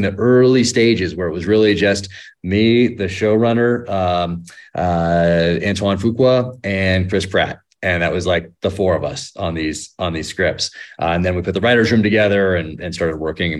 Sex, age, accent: male, 30-49, American